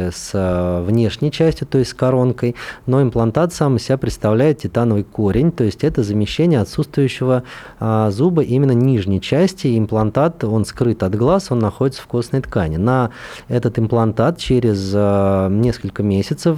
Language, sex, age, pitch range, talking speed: Russian, male, 20-39, 105-135 Hz, 145 wpm